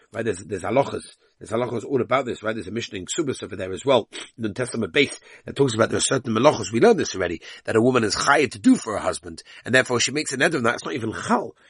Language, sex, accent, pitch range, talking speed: English, male, British, 110-135 Hz, 275 wpm